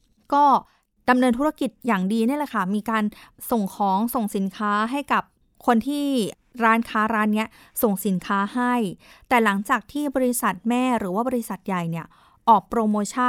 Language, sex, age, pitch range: Thai, female, 20-39, 205-255 Hz